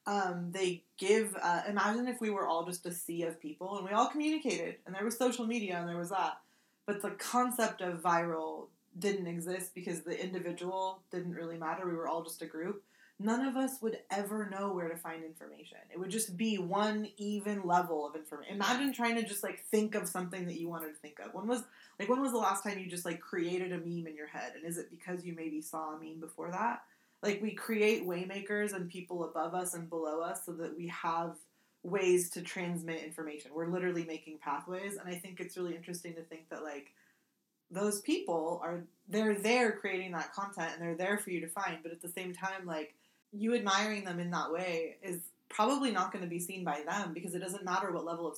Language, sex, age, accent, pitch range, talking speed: English, female, 20-39, American, 170-205 Hz, 225 wpm